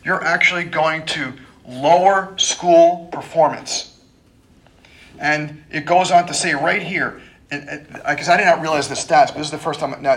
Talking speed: 170 wpm